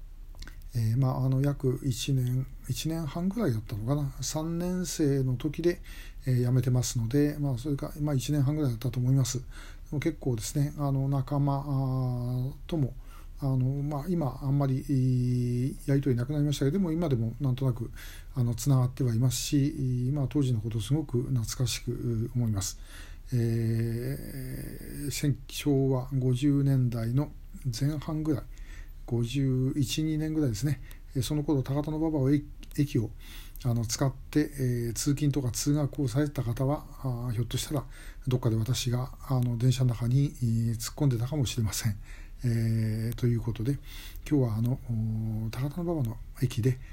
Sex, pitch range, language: male, 120-145 Hz, Japanese